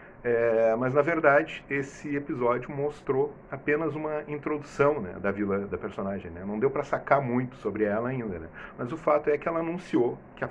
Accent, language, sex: Brazilian, Portuguese, male